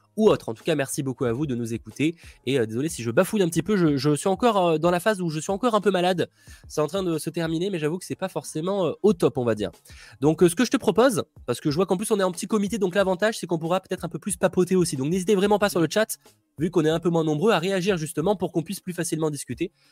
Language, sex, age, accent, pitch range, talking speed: French, male, 20-39, French, 135-180 Hz, 320 wpm